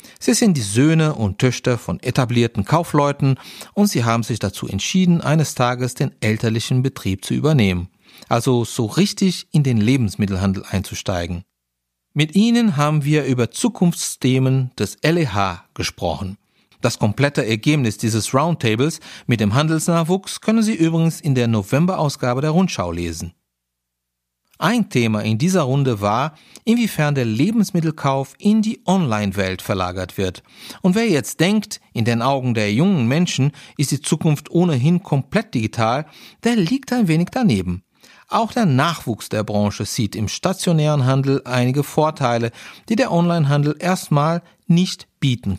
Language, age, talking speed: German, 40-59, 140 wpm